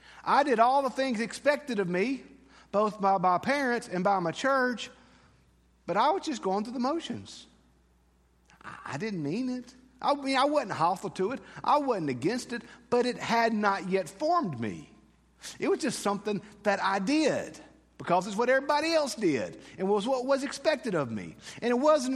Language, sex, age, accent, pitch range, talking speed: English, male, 40-59, American, 150-235 Hz, 185 wpm